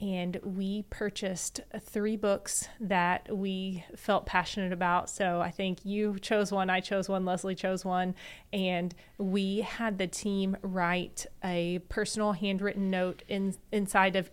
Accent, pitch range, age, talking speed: American, 180-210 Hz, 20-39, 140 wpm